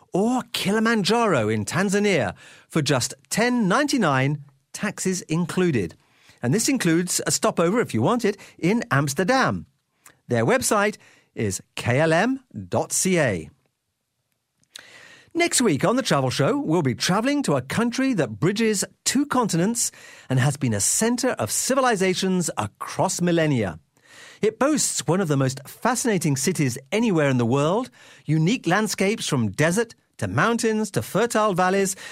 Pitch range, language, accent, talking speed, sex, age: 140-220 Hz, English, British, 130 wpm, male, 40-59